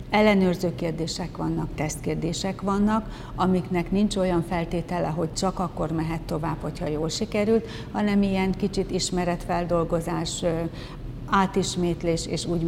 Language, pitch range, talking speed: Hungarian, 165-190 Hz, 115 wpm